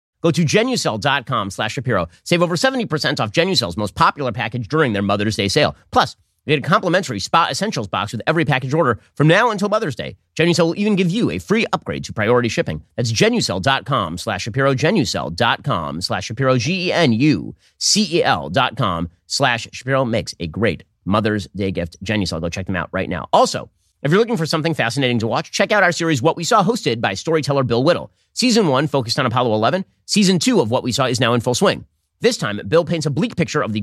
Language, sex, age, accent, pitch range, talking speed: English, male, 30-49, American, 115-165 Hz, 210 wpm